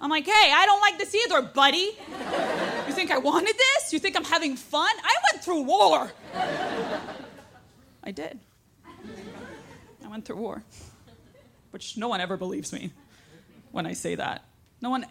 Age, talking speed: 20-39, 165 wpm